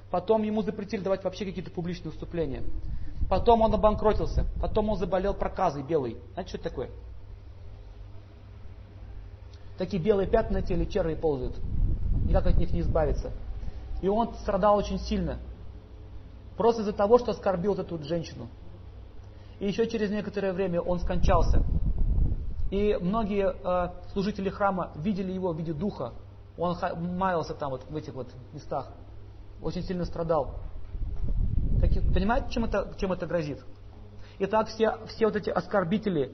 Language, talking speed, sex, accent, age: Russian, 140 wpm, male, native, 30-49